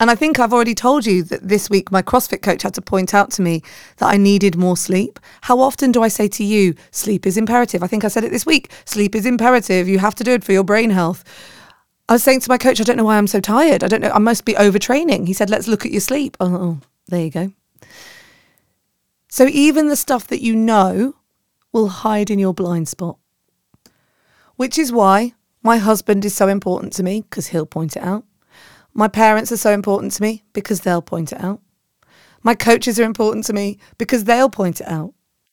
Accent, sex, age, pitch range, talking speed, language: British, female, 30-49, 180-230 Hz, 230 wpm, English